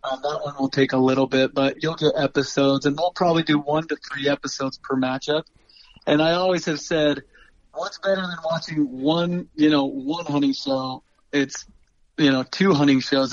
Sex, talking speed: male, 200 wpm